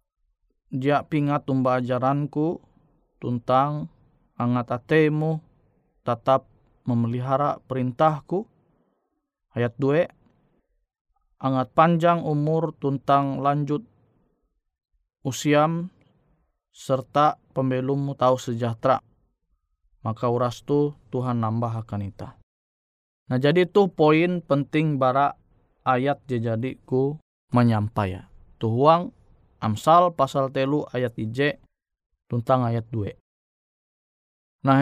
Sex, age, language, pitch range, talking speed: male, 20-39, Indonesian, 115-150 Hz, 85 wpm